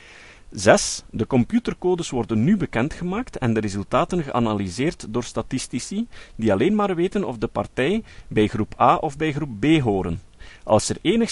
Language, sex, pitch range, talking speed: Dutch, male, 110-170 Hz, 160 wpm